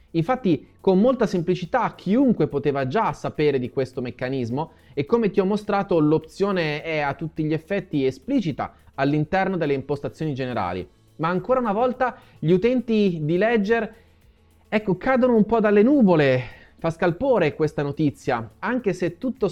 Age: 30-49